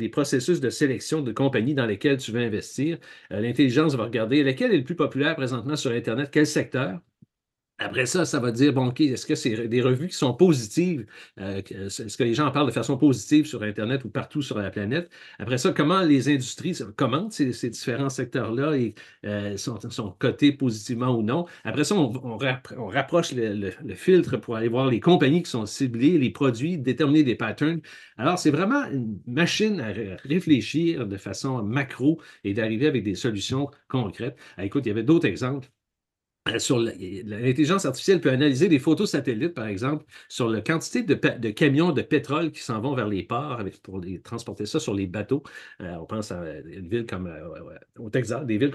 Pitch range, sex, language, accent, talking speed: 115-150 Hz, male, French, Canadian, 205 wpm